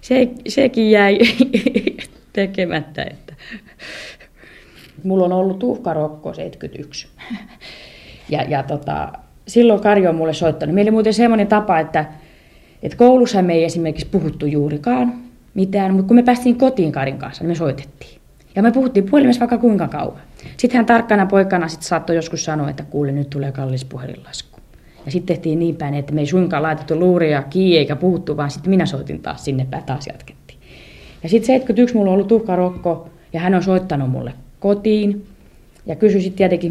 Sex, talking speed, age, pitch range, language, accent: female, 165 wpm, 30-49, 150-205 Hz, Finnish, native